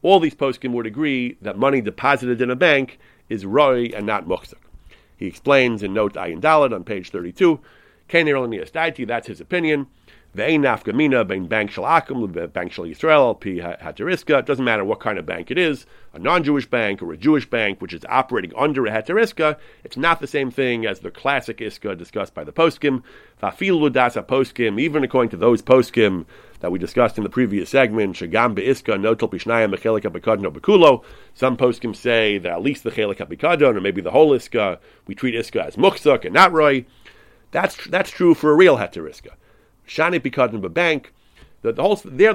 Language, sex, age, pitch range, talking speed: English, male, 40-59, 115-150 Hz, 170 wpm